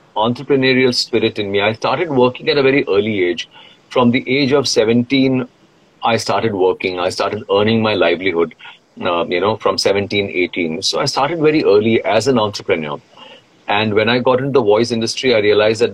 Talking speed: 190 wpm